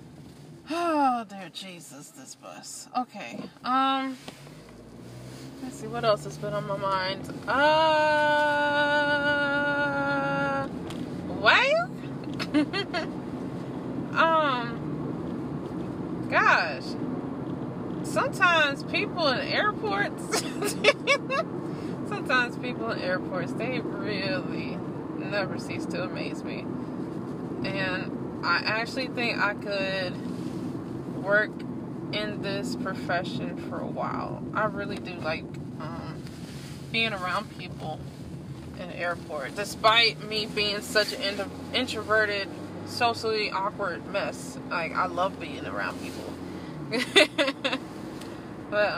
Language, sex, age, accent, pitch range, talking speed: English, female, 20-39, American, 210-290 Hz, 95 wpm